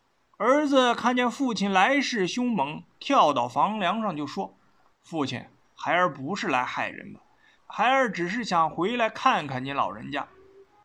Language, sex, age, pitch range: Chinese, male, 20-39, 185-250 Hz